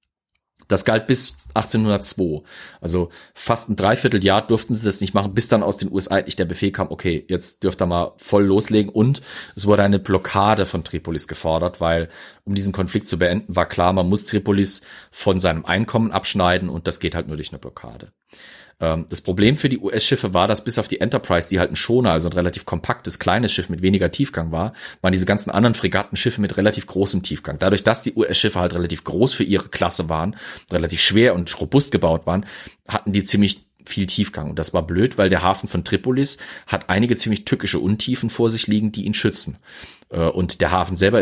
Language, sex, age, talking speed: German, male, 40-59, 205 wpm